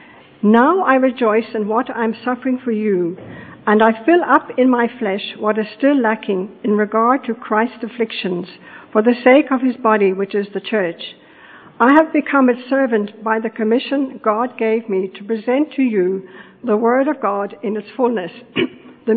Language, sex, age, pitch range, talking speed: English, female, 60-79, 215-255 Hz, 185 wpm